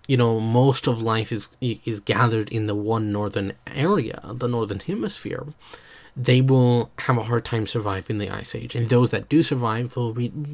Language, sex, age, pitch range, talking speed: English, male, 30-49, 115-140 Hz, 190 wpm